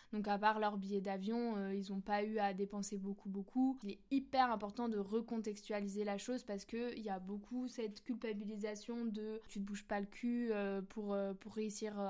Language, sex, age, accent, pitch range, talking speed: French, female, 20-39, French, 200-230 Hz, 205 wpm